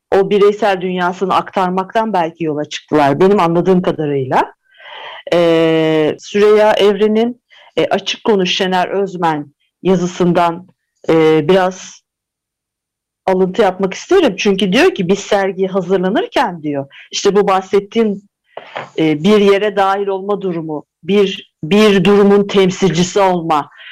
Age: 50-69